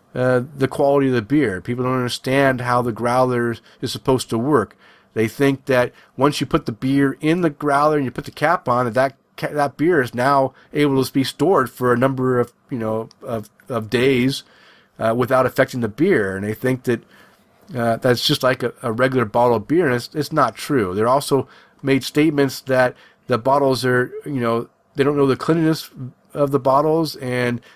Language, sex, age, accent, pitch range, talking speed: English, male, 40-59, American, 120-140 Hz, 210 wpm